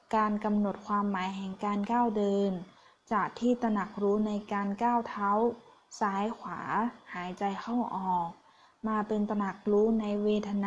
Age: 20-39